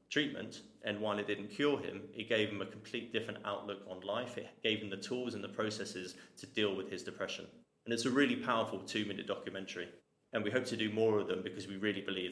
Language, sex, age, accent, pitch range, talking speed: English, male, 20-39, British, 95-115 Hz, 240 wpm